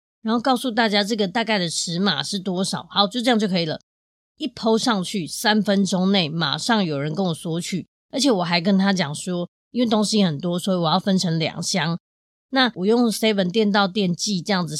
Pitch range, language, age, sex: 175-220 Hz, Chinese, 20-39, female